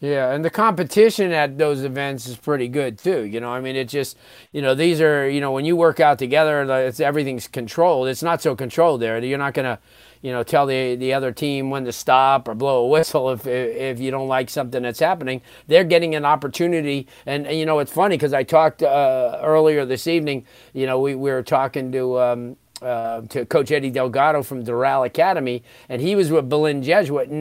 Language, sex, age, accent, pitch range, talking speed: English, male, 40-59, American, 130-160 Hz, 225 wpm